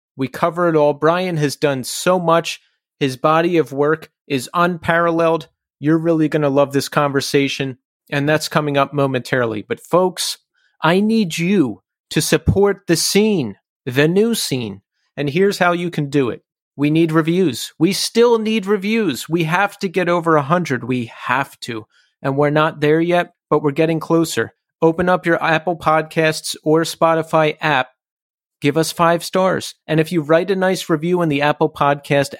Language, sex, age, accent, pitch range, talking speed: English, male, 30-49, American, 145-180 Hz, 175 wpm